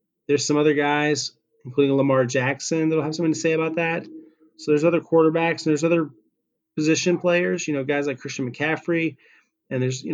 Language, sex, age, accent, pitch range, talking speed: English, male, 30-49, American, 130-155 Hz, 190 wpm